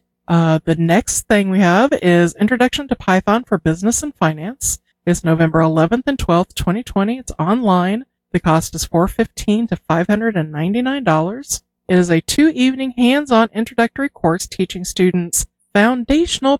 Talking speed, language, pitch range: 140 wpm, English, 165-220 Hz